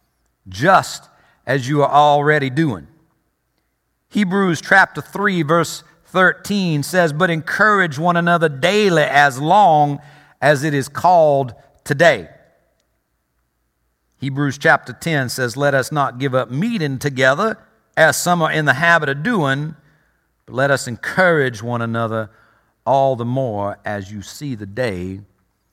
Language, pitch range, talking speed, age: English, 115-165 Hz, 135 wpm, 50-69